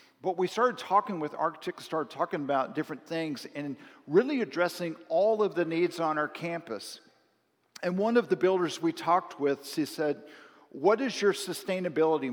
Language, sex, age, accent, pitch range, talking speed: English, male, 50-69, American, 150-190 Hz, 170 wpm